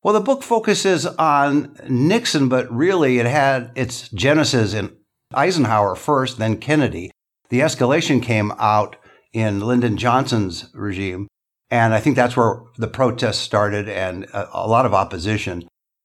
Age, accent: 60-79, American